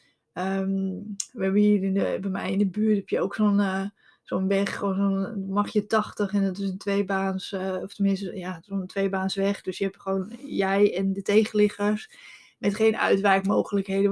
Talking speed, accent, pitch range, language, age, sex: 175 wpm, Dutch, 195-220 Hz, Dutch, 20-39, female